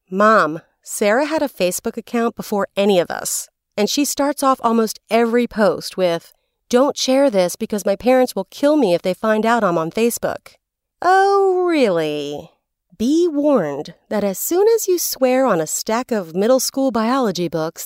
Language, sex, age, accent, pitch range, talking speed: English, female, 30-49, American, 180-255 Hz, 175 wpm